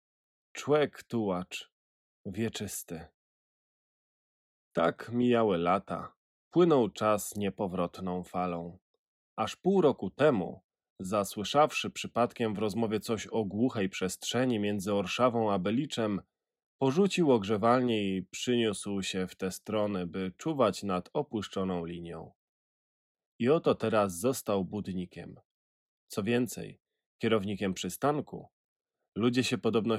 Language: Polish